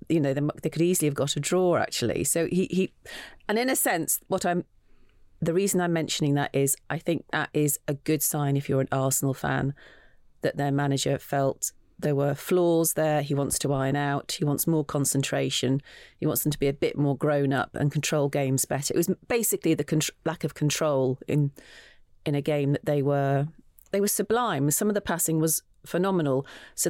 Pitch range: 145-185 Hz